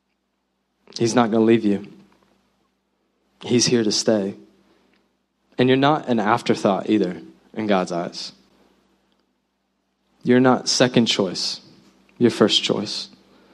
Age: 20-39